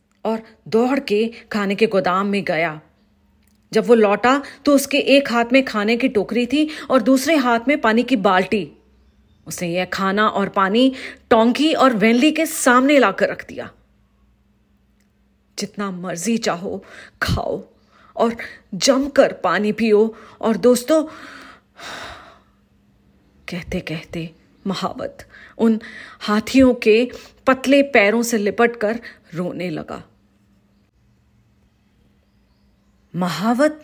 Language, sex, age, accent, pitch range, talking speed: English, female, 30-49, Indian, 180-255 Hz, 110 wpm